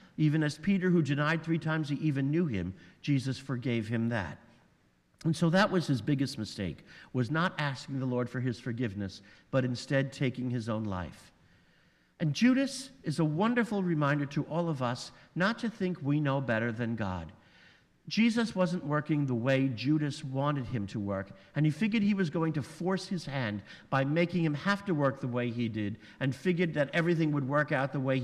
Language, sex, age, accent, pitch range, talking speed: English, male, 50-69, American, 125-175 Hz, 200 wpm